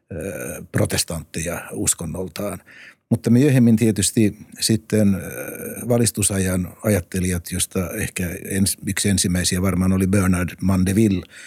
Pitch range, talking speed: 90-110 Hz, 85 wpm